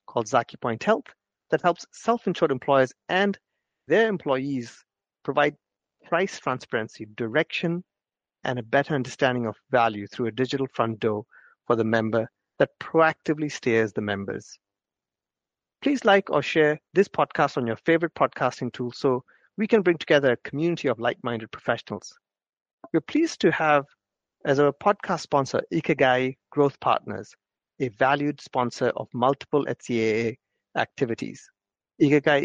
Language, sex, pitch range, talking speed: English, male, 125-165 Hz, 135 wpm